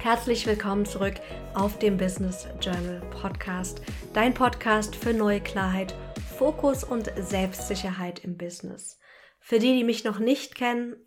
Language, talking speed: German, 135 wpm